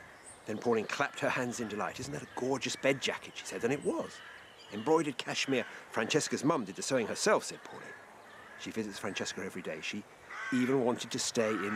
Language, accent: English, British